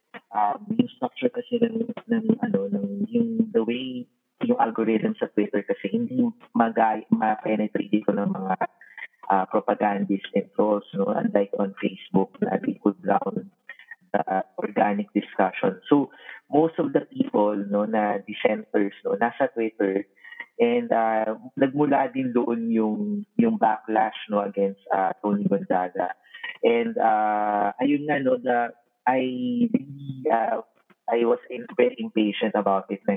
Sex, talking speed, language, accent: male, 125 wpm, English, Filipino